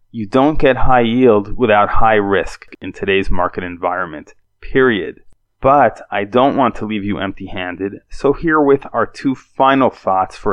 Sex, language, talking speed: male, English, 160 wpm